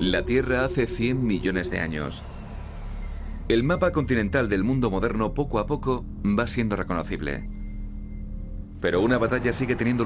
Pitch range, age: 100-125 Hz, 30-49